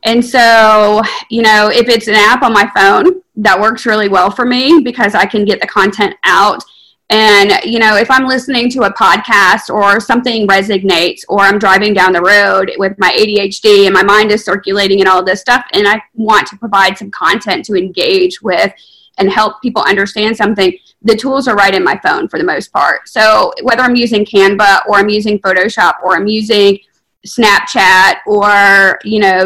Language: English